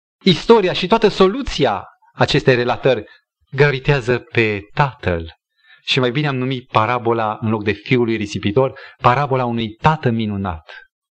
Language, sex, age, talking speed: Romanian, male, 30-49, 135 wpm